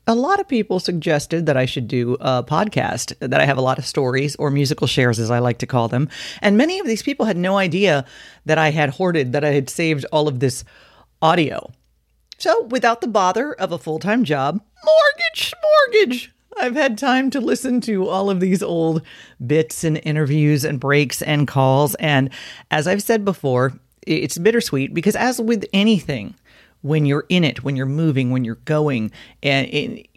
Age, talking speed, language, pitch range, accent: 40-59, 190 wpm, English, 135-195 Hz, American